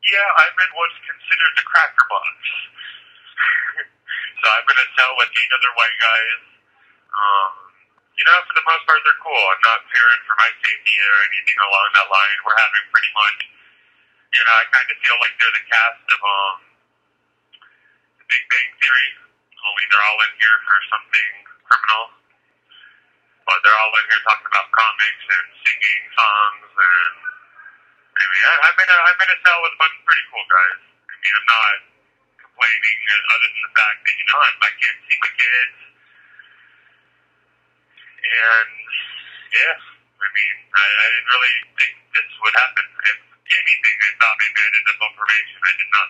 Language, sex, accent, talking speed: English, male, American, 175 wpm